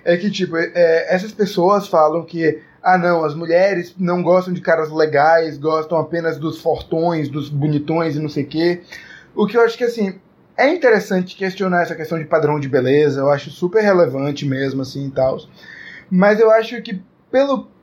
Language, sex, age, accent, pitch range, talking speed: Portuguese, male, 20-39, Brazilian, 160-215 Hz, 185 wpm